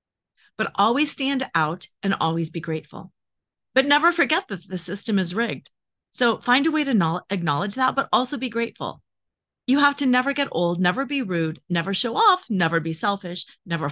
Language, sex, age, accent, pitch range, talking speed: English, female, 30-49, American, 175-255 Hz, 185 wpm